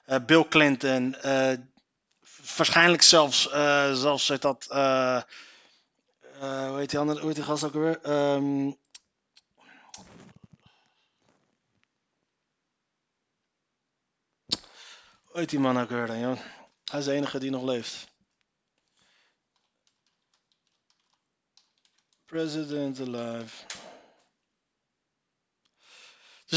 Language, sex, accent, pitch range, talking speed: Dutch, male, Dutch, 130-165 Hz, 95 wpm